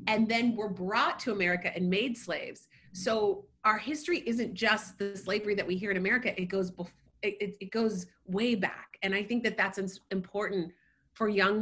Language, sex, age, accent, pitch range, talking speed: English, female, 30-49, American, 180-225 Hz, 190 wpm